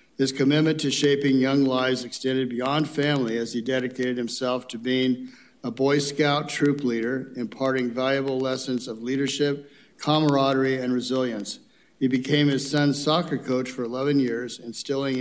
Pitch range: 125-140 Hz